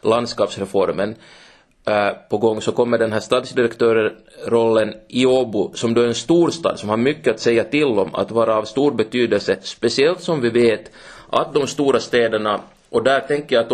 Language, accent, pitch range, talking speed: Swedish, Finnish, 110-130 Hz, 180 wpm